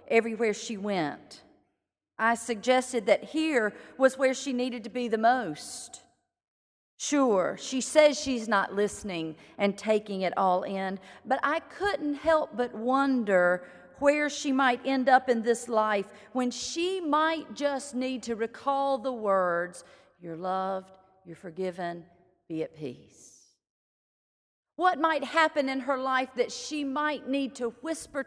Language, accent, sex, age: English, American, female, 50-69